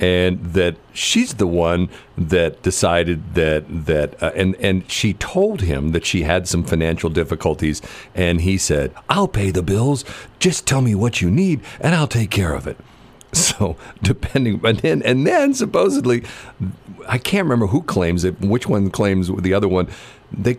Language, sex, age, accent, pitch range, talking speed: English, male, 50-69, American, 80-110 Hz, 175 wpm